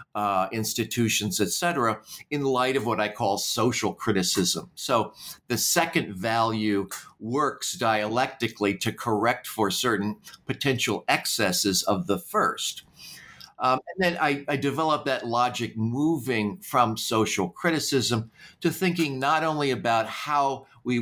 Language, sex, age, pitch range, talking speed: English, male, 50-69, 110-145 Hz, 130 wpm